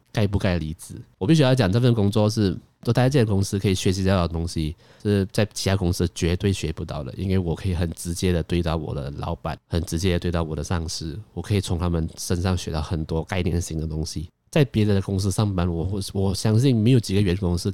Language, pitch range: Chinese, 85-105 Hz